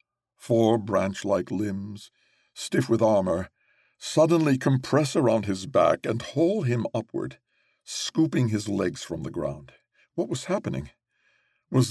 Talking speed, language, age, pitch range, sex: 125 wpm, English, 60-79, 105-125 Hz, male